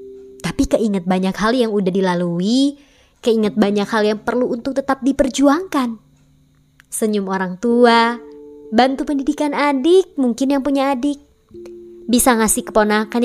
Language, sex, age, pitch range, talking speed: Indonesian, male, 20-39, 190-260 Hz, 125 wpm